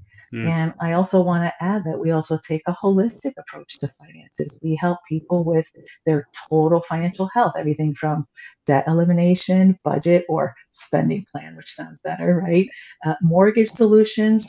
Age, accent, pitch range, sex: 40-59, American, 160-195 Hz, female